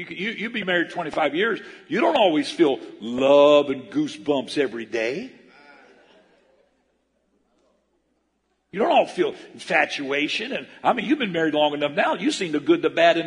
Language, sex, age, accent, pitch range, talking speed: English, male, 50-69, American, 215-350 Hz, 165 wpm